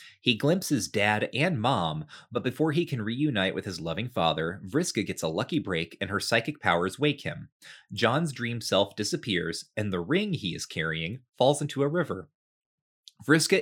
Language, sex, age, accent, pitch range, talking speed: English, male, 30-49, American, 95-140 Hz, 175 wpm